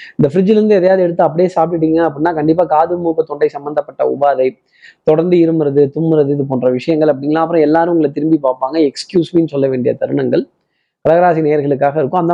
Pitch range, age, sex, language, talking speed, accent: 140-175 Hz, 20-39, male, Tamil, 165 wpm, native